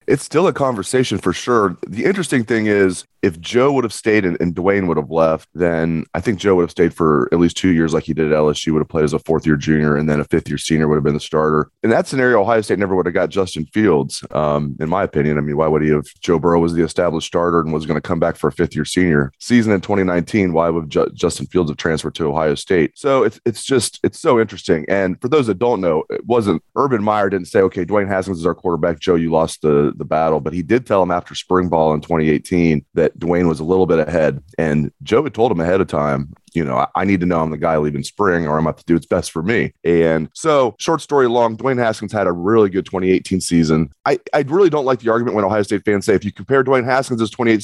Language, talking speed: English, 270 wpm